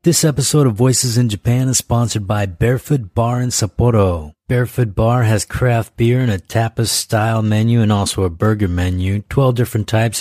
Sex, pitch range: male, 100-120 Hz